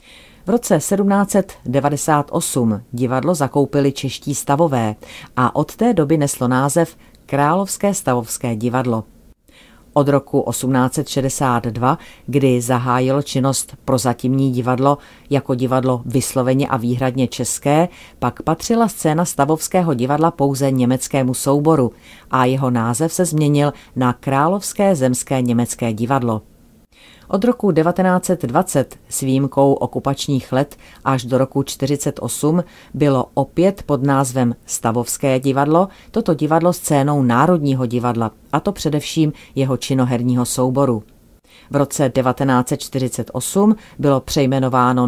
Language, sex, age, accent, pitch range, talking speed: Czech, female, 40-59, native, 125-155 Hz, 110 wpm